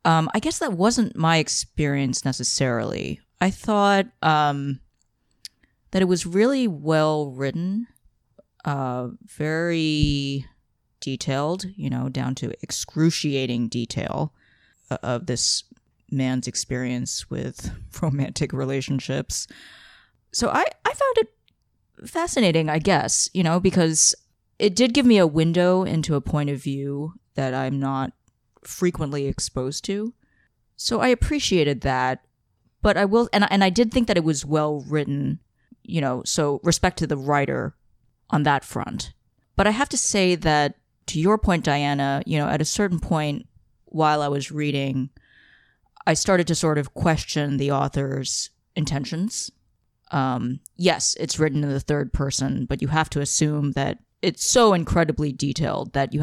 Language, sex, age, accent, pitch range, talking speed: English, female, 20-39, American, 135-180 Hz, 145 wpm